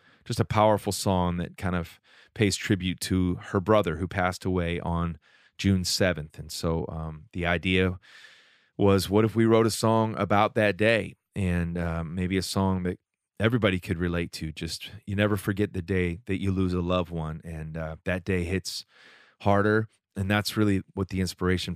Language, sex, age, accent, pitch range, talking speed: English, male, 30-49, American, 85-105 Hz, 185 wpm